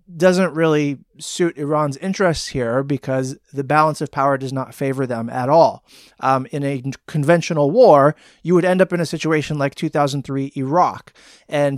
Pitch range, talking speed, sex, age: 135-165 Hz, 170 wpm, male, 30-49